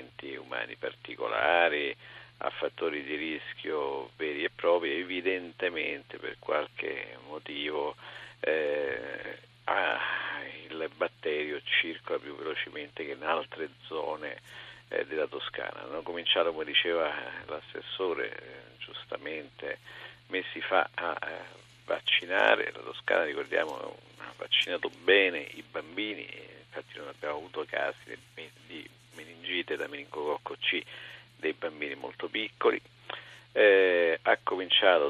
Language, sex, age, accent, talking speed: Italian, male, 50-69, native, 110 wpm